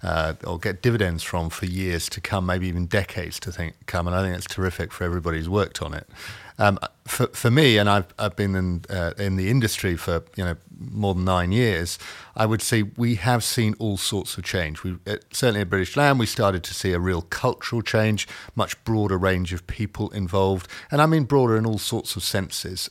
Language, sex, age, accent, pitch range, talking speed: English, male, 40-59, British, 85-110 Hz, 225 wpm